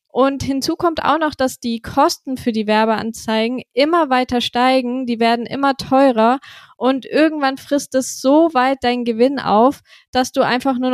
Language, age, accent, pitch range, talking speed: German, 20-39, German, 235-270 Hz, 170 wpm